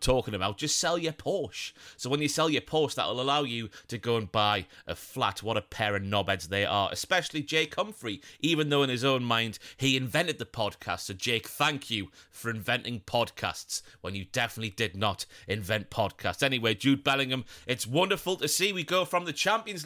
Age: 30-49